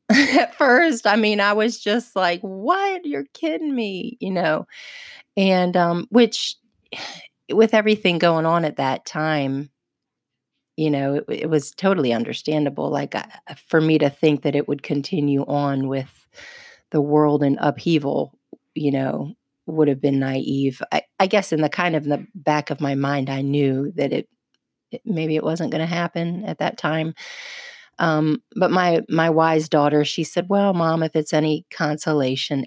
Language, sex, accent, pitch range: English, female, American, 145-210 Hz